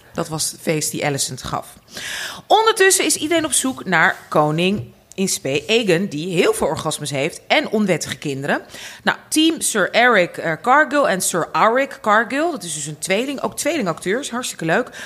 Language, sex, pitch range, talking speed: Dutch, female, 165-240 Hz, 165 wpm